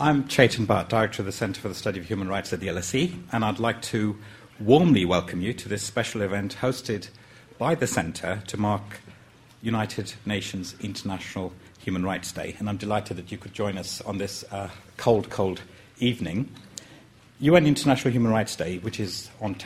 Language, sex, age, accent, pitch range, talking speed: English, male, 60-79, British, 100-120 Hz, 185 wpm